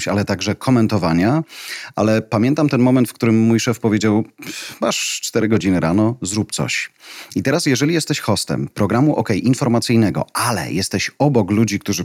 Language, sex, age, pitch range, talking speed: Polish, male, 40-59, 100-125 Hz, 160 wpm